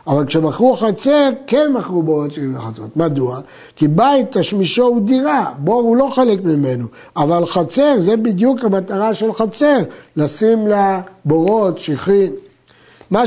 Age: 60-79